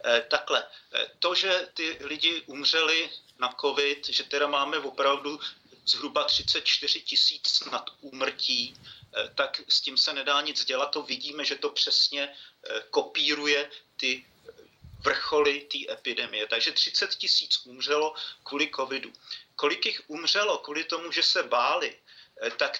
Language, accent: Czech, native